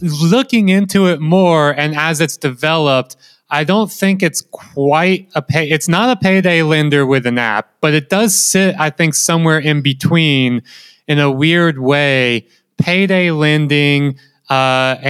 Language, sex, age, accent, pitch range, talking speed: English, male, 20-39, American, 135-165 Hz, 155 wpm